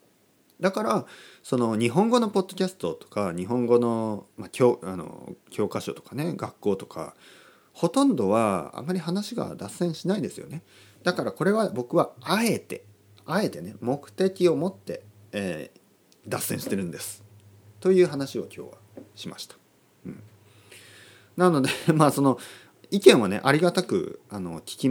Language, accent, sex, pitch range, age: Japanese, native, male, 100-160 Hz, 30-49